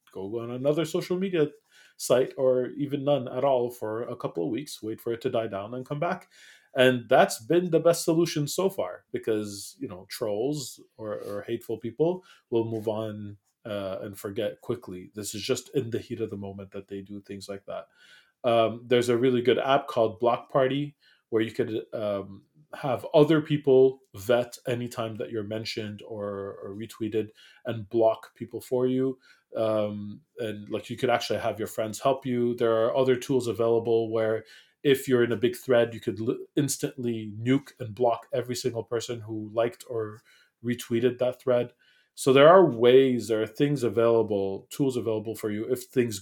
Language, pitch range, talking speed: English, 110-135 Hz, 185 wpm